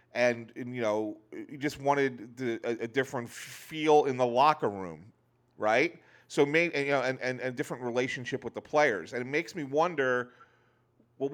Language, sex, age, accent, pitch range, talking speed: English, male, 40-59, American, 120-155 Hz, 195 wpm